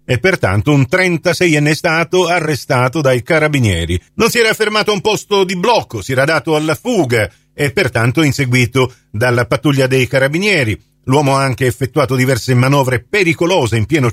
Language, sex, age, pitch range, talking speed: Italian, male, 50-69, 115-155 Hz, 160 wpm